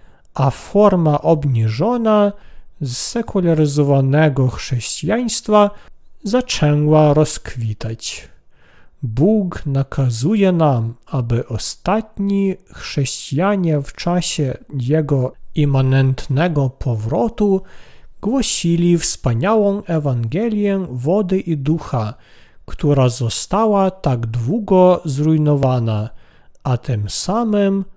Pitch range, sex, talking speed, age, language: 130-195 Hz, male, 70 wpm, 40-59, Polish